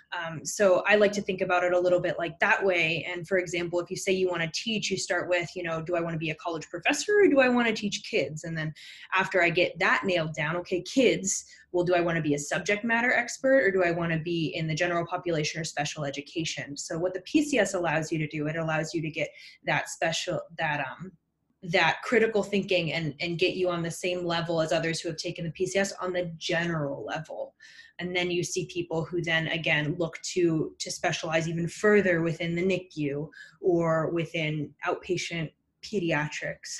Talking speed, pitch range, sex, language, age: 225 wpm, 160-195 Hz, female, English, 20-39